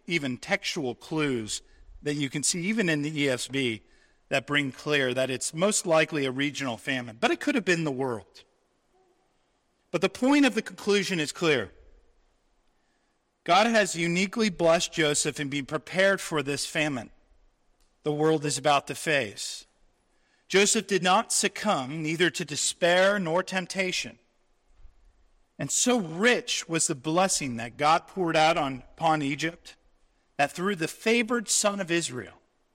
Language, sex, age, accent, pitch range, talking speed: English, male, 40-59, American, 145-195 Hz, 150 wpm